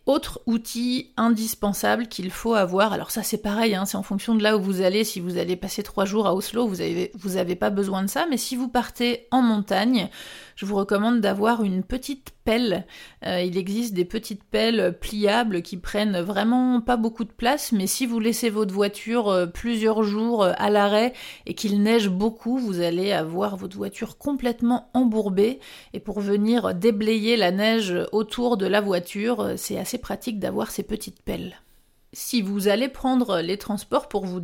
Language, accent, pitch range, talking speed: French, French, 190-235 Hz, 190 wpm